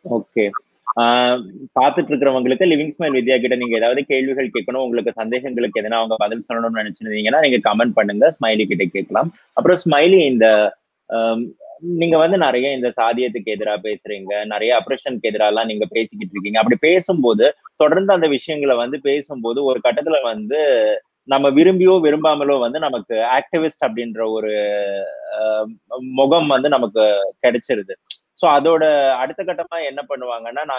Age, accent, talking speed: 20-39, native, 95 wpm